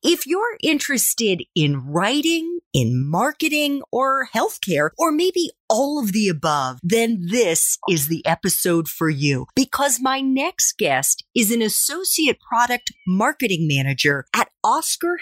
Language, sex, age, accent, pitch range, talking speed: English, female, 40-59, American, 175-285 Hz, 135 wpm